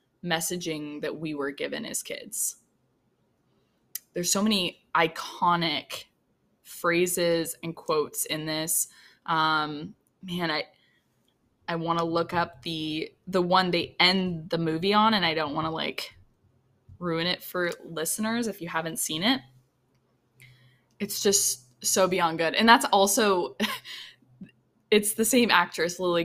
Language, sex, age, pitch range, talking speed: English, female, 10-29, 155-190 Hz, 135 wpm